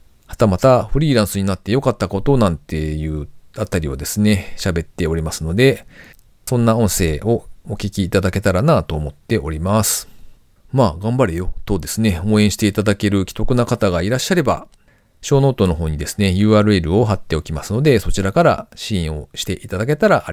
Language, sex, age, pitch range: Japanese, male, 40-59, 85-125 Hz